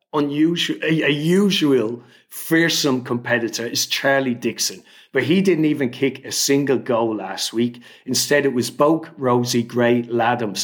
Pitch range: 120-155 Hz